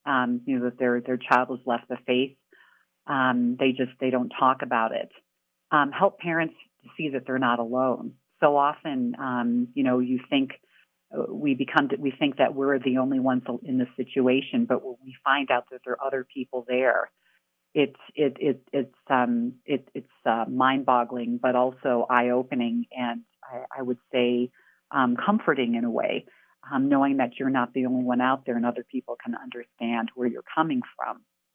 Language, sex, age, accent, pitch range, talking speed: English, female, 40-59, American, 120-140 Hz, 190 wpm